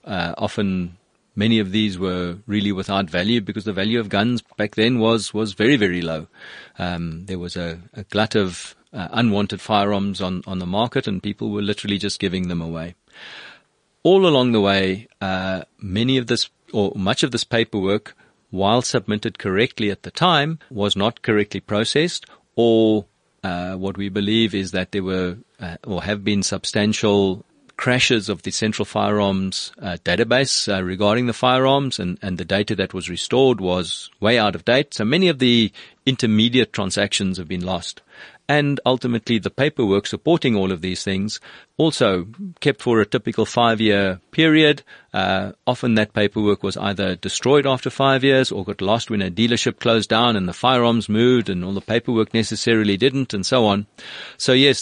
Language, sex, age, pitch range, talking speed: English, male, 40-59, 95-120 Hz, 175 wpm